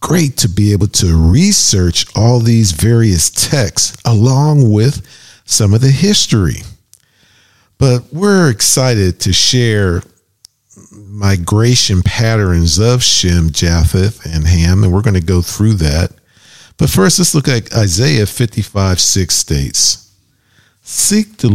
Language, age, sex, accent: English, 50-69, male, American